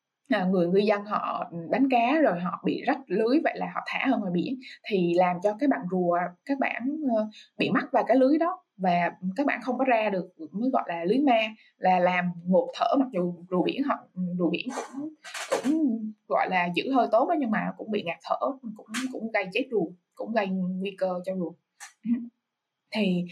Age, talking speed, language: 20-39, 210 wpm, Vietnamese